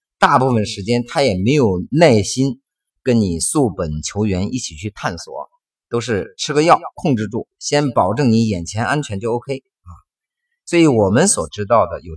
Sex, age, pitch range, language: male, 50-69, 95-130 Hz, Chinese